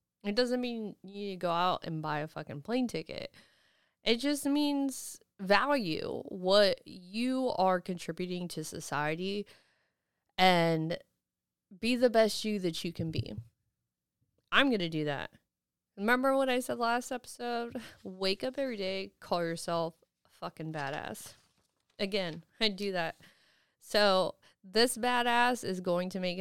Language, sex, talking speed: English, female, 145 wpm